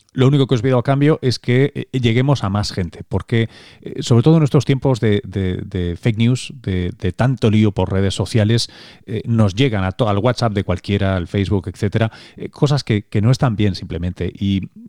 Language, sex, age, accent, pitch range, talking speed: Spanish, male, 30-49, Spanish, 95-125 Hz, 205 wpm